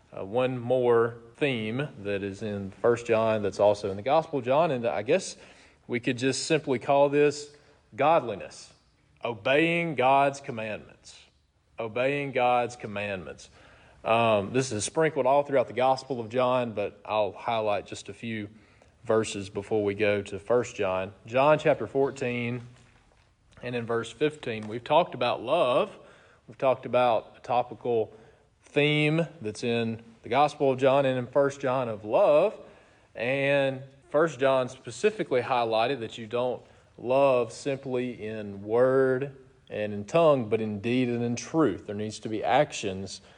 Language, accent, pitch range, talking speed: English, American, 105-135 Hz, 150 wpm